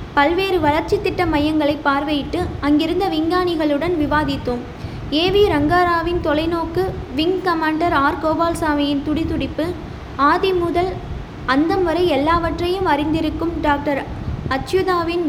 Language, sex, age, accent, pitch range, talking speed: Tamil, female, 20-39, native, 295-350 Hz, 100 wpm